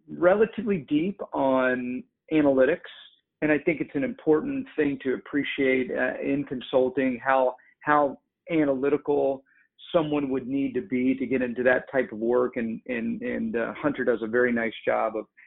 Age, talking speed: 50-69, 165 wpm